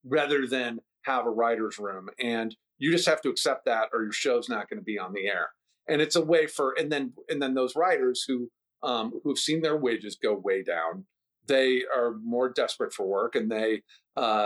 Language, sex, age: English, male, 50-69